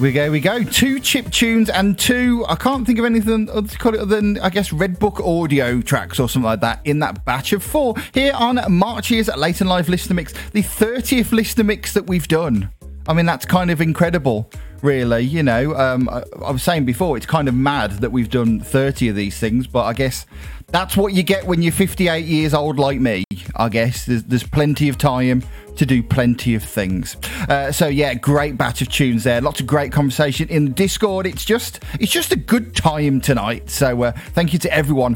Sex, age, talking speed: male, 30-49, 215 wpm